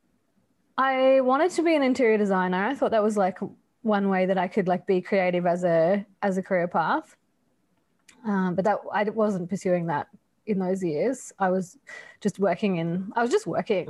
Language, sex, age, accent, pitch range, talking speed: English, female, 20-39, Australian, 195-245 Hz, 195 wpm